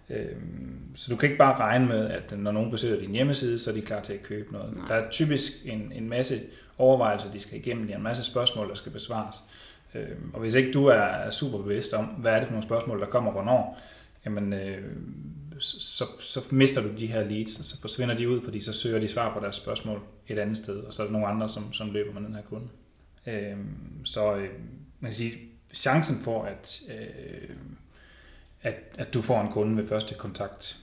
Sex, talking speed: male, 210 wpm